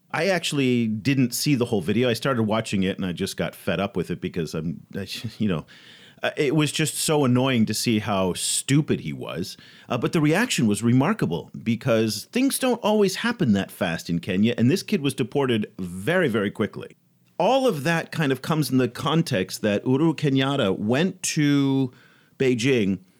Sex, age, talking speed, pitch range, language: male, 40-59, 190 wpm, 110-160 Hz, English